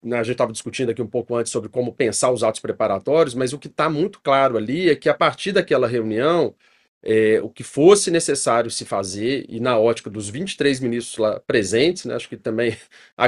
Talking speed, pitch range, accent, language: 210 wpm, 120-150 Hz, Brazilian, Portuguese